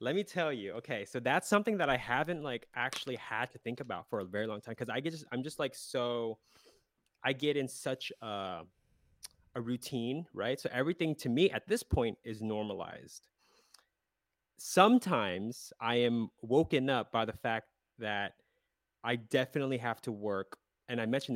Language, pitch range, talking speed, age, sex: English, 100-125 Hz, 175 wpm, 20-39, male